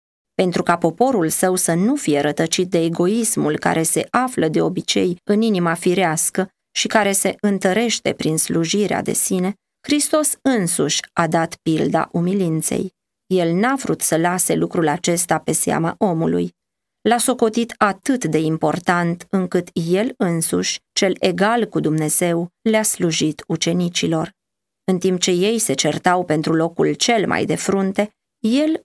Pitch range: 165-210 Hz